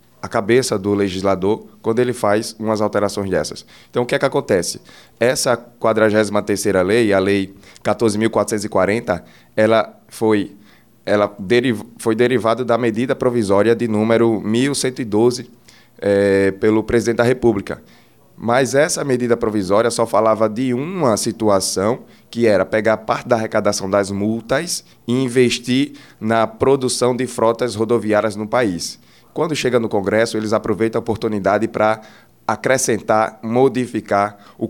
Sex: male